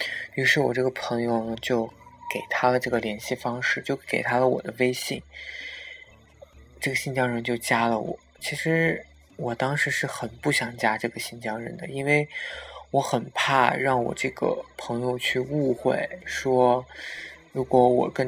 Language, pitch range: Chinese, 120-150 Hz